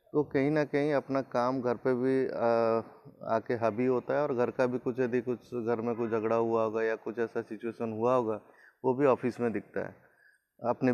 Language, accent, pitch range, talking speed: Hindi, native, 120-140 Hz, 215 wpm